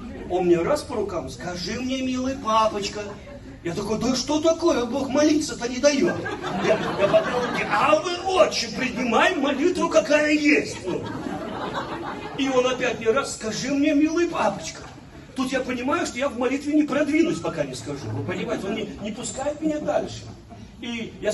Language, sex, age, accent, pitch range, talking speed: Russian, male, 40-59, native, 185-300 Hz, 170 wpm